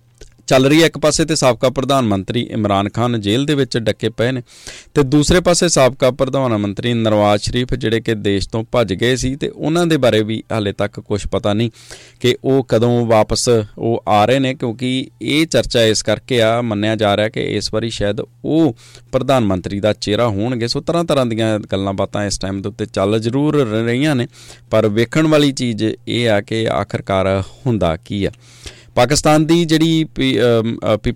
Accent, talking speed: Indian, 130 wpm